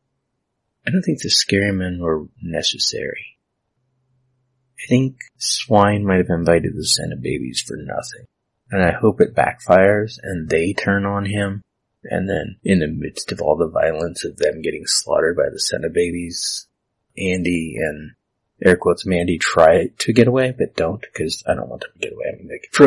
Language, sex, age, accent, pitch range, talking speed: English, male, 30-49, American, 95-130 Hz, 180 wpm